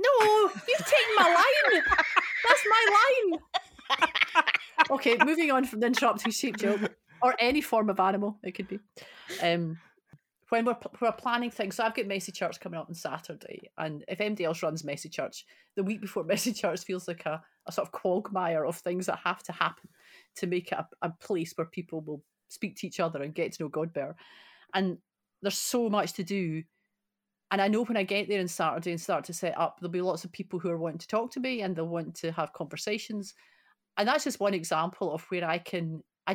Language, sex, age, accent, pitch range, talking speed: English, female, 30-49, British, 170-215 Hz, 210 wpm